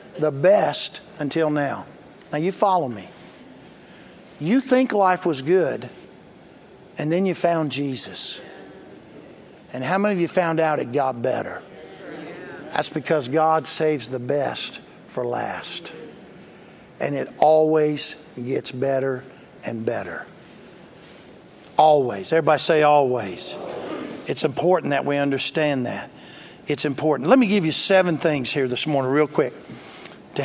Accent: American